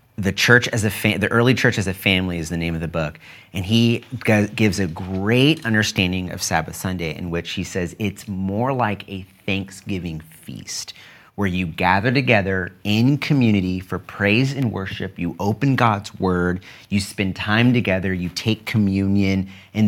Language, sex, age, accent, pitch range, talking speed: English, male, 30-49, American, 95-120 Hz, 175 wpm